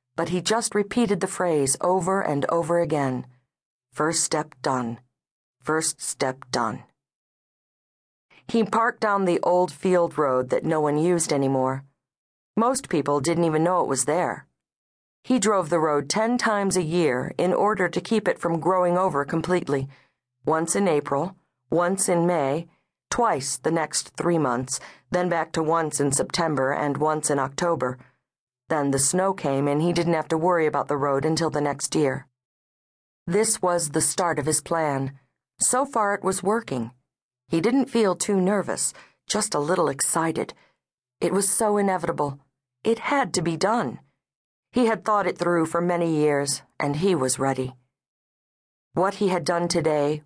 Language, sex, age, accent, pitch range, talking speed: English, female, 40-59, American, 140-180 Hz, 165 wpm